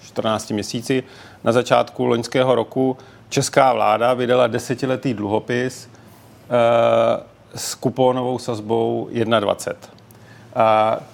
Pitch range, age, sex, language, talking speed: 110-130 Hz, 40-59, male, Czech, 80 wpm